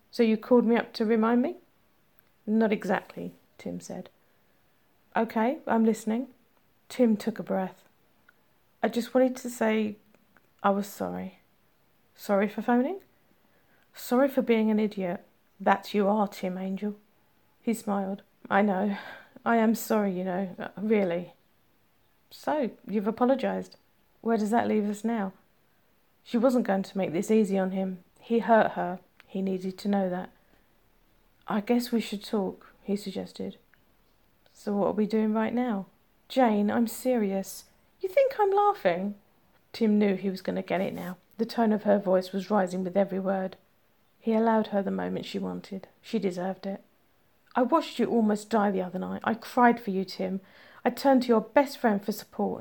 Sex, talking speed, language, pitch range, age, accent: female, 170 wpm, English, 195-230 Hz, 40-59, British